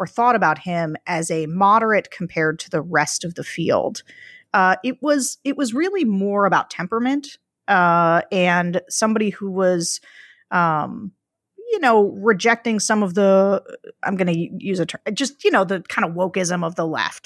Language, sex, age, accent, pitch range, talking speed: English, female, 30-49, American, 180-240 Hz, 175 wpm